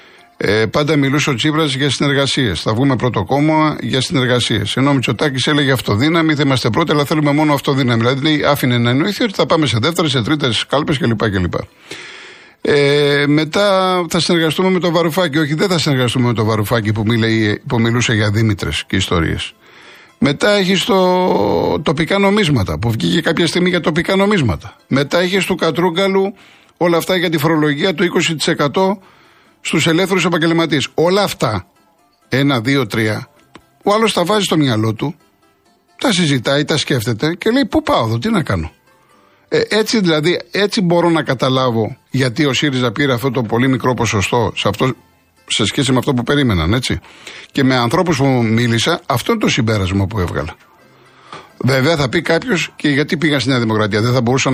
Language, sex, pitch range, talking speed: Greek, male, 120-170 Hz, 170 wpm